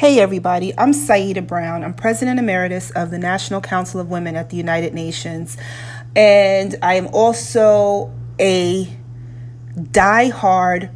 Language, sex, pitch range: English, female, 165-200 Hz